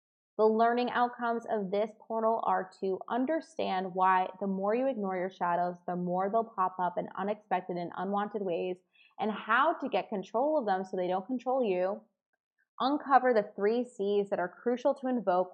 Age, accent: 20-39, American